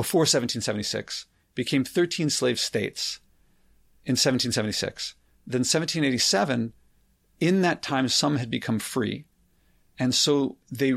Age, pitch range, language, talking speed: 40-59, 115-145 Hz, English, 110 wpm